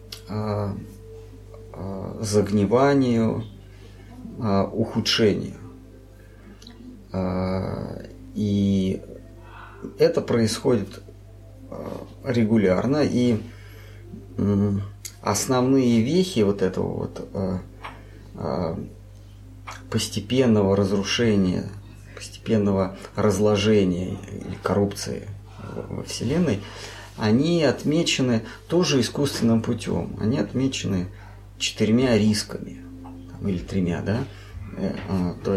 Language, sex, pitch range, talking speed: Russian, male, 95-110 Hz, 55 wpm